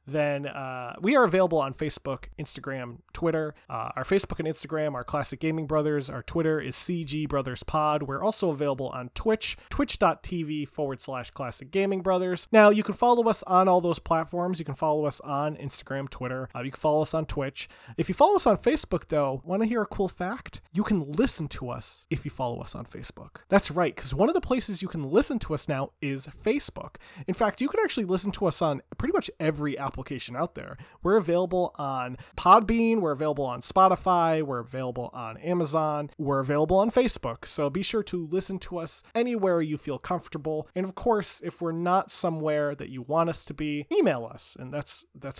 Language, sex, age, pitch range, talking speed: English, male, 20-39, 140-190 Hz, 210 wpm